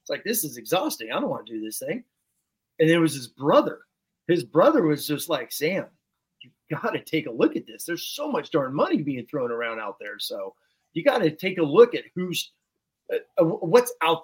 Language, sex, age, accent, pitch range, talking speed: English, male, 30-49, American, 120-170 Hz, 220 wpm